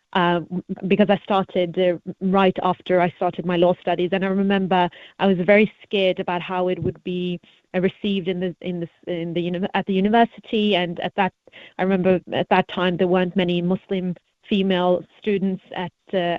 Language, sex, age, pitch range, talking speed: English, female, 30-49, 175-195 Hz, 190 wpm